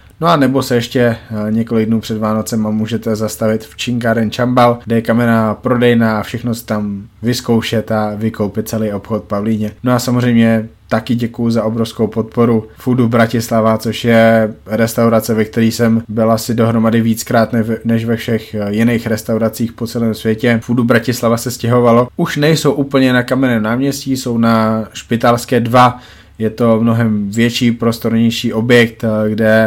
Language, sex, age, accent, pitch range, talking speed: Czech, male, 20-39, native, 110-120 Hz, 155 wpm